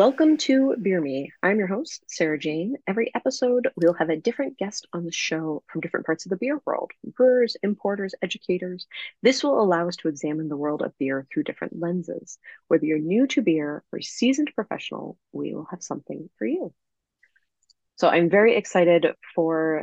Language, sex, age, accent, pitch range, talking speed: English, female, 30-49, American, 155-200 Hz, 185 wpm